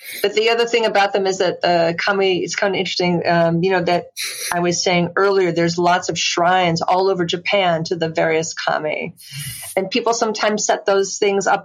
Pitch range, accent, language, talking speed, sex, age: 165-190 Hz, American, English, 205 wpm, female, 30-49